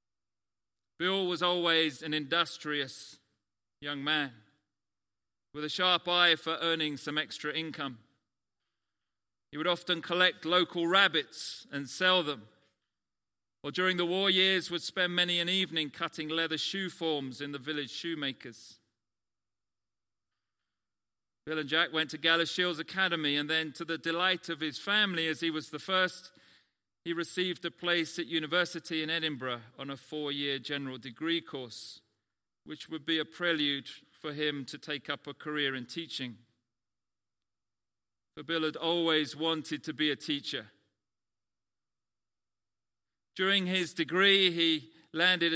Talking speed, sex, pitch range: 140 wpm, male, 110-170 Hz